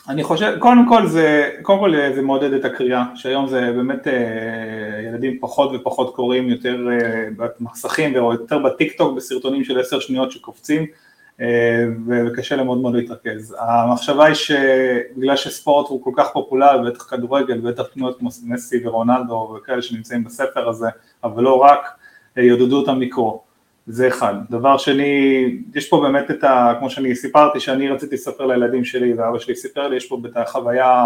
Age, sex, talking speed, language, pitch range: 30-49, male, 160 wpm, Hebrew, 120-140 Hz